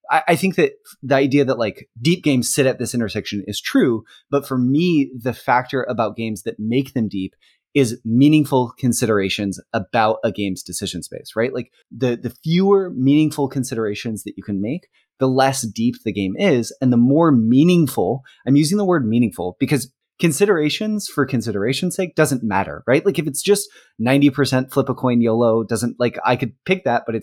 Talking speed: 190 wpm